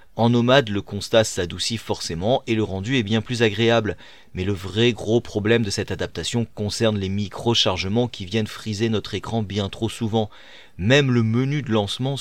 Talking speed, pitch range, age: 180 wpm, 105-125 Hz, 30-49